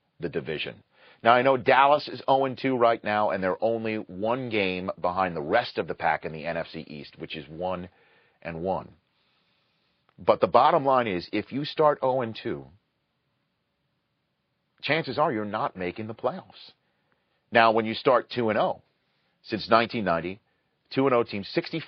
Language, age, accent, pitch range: English, 40-59, American, 100-140 Hz